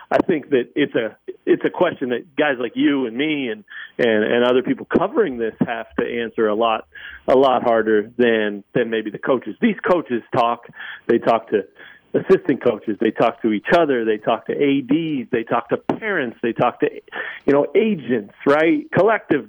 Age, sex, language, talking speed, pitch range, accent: 40-59, male, English, 195 wpm, 115-170 Hz, American